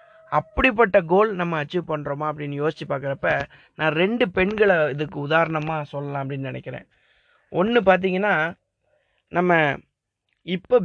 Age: 20-39